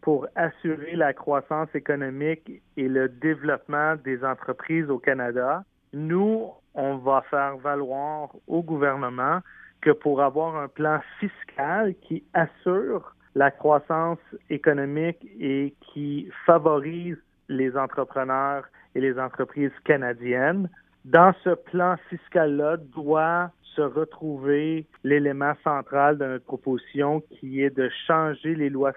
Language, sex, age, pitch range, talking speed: French, male, 40-59, 135-160 Hz, 120 wpm